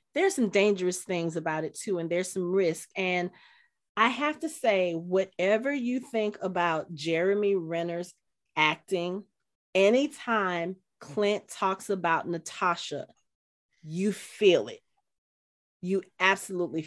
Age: 30-49